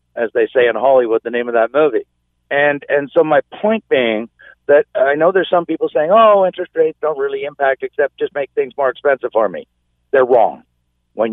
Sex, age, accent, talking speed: male, 50-69, American, 210 wpm